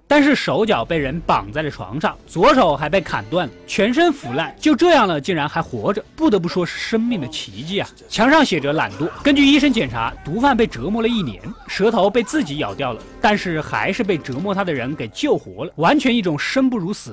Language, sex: Chinese, male